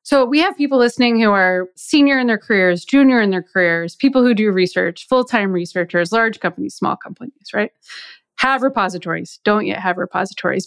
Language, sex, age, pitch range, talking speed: English, female, 20-39, 185-235 Hz, 180 wpm